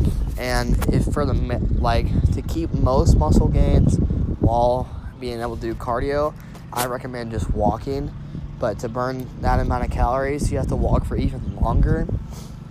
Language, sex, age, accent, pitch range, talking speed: English, male, 10-29, American, 105-130 Hz, 160 wpm